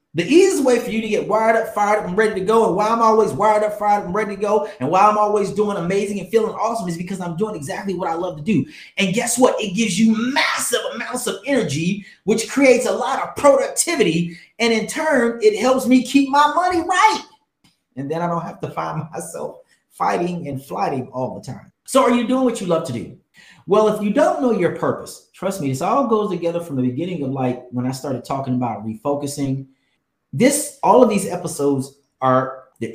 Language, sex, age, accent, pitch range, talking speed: English, male, 30-49, American, 165-245 Hz, 230 wpm